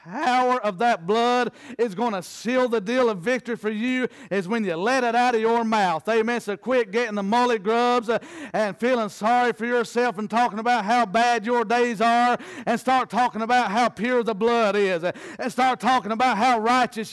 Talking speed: 205 wpm